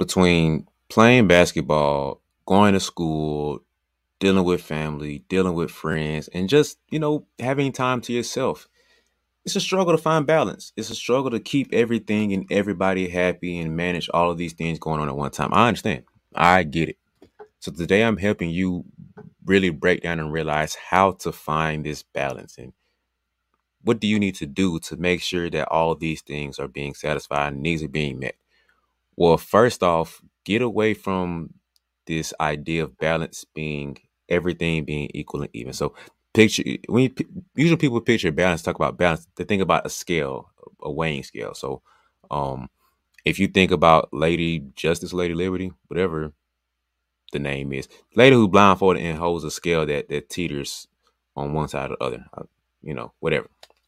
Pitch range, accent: 75-95 Hz, American